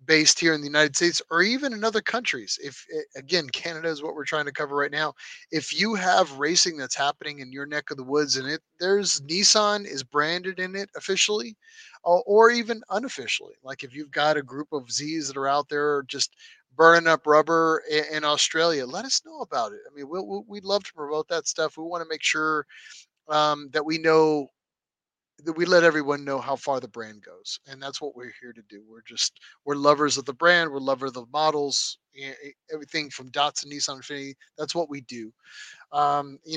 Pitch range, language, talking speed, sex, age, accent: 140-165 Hz, English, 215 wpm, male, 30-49, American